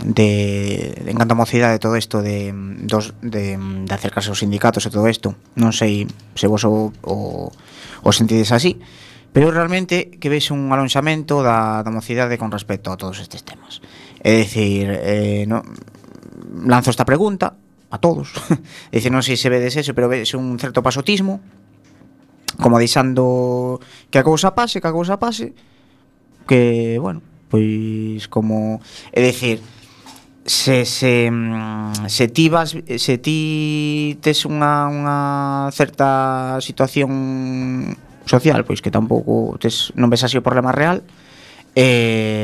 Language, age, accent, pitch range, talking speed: Spanish, 30-49, Spanish, 110-140 Hz, 135 wpm